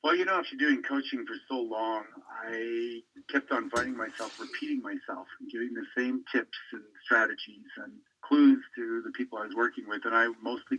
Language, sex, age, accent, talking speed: English, male, 50-69, American, 195 wpm